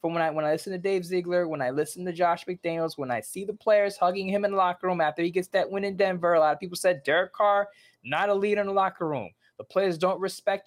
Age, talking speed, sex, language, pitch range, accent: 20-39, 285 wpm, male, English, 170-215 Hz, American